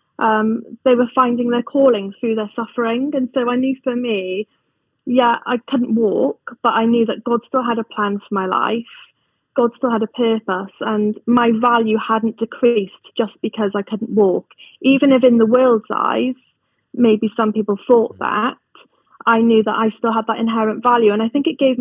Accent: British